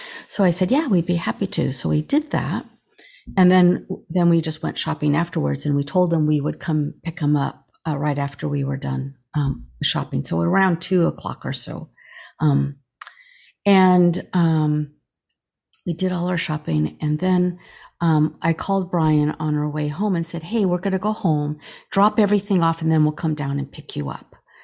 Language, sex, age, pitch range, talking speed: English, female, 50-69, 150-195 Hz, 200 wpm